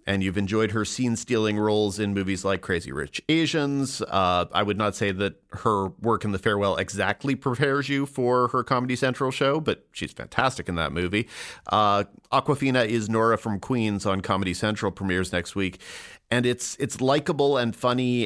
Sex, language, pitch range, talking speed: male, English, 95-125 Hz, 180 wpm